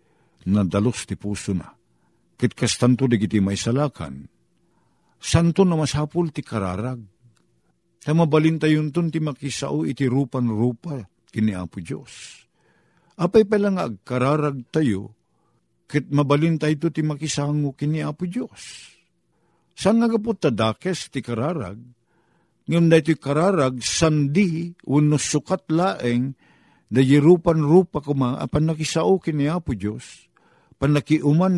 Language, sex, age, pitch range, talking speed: Filipino, male, 50-69, 115-165 Hz, 110 wpm